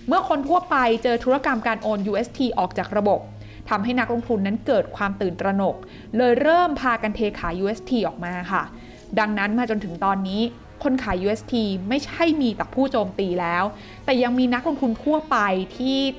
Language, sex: Thai, female